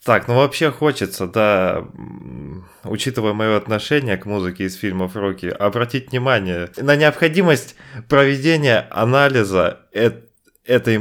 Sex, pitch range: male, 95-115 Hz